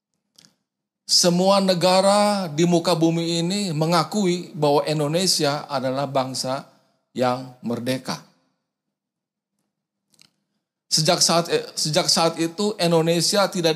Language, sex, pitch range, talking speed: Indonesian, male, 150-180 Hz, 90 wpm